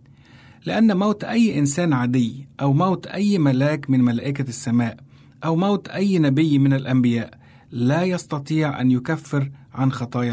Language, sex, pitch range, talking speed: Arabic, male, 125-155 Hz, 140 wpm